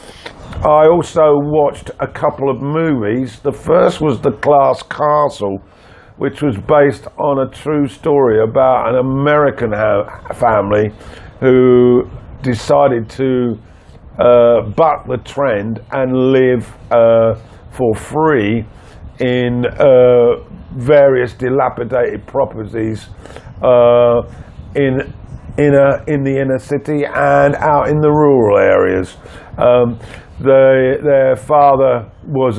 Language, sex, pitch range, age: English, male, 115-140 Hz, 50-69